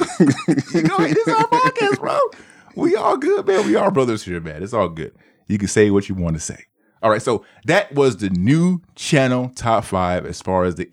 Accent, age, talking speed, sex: American, 30-49, 205 wpm, male